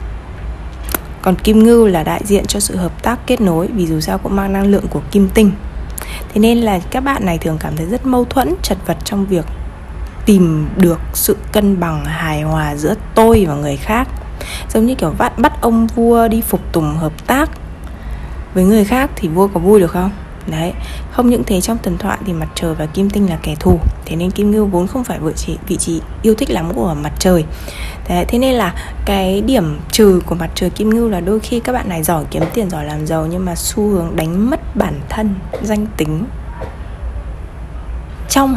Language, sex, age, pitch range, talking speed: Vietnamese, female, 20-39, 150-215 Hz, 210 wpm